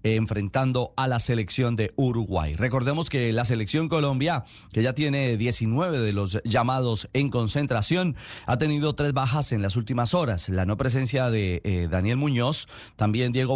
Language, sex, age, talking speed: Spanish, male, 40-59, 165 wpm